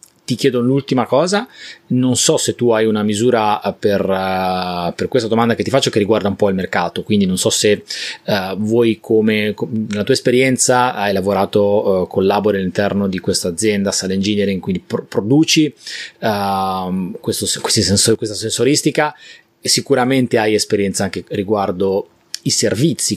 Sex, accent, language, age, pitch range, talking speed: male, native, Italian, 30-49, 100-125 Hz, 165 wpm